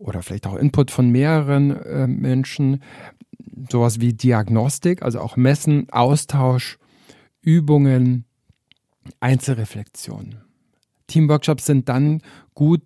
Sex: male